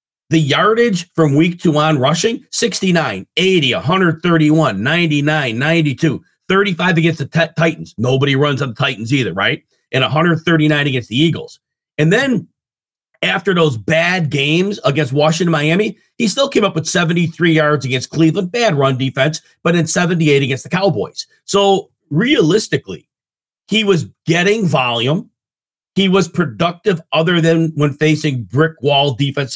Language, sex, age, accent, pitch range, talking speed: English, male, 40-59, American, 145-180 Hz, 145 wpm